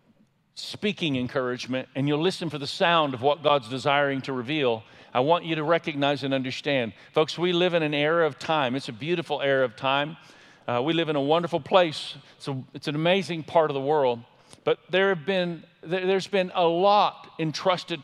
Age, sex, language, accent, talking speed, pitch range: 50-69, male, English, American, 185 wpm, 145-180 Hz